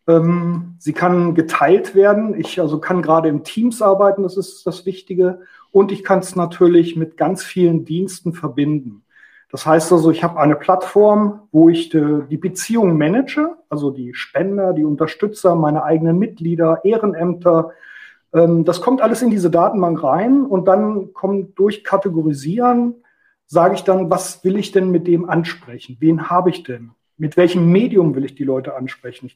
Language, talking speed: German, 165 wpm